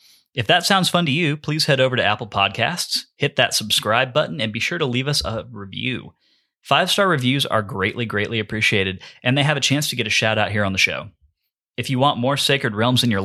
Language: English